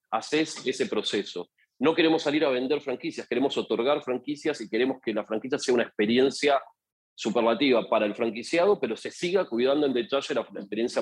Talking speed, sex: 175 wpm, male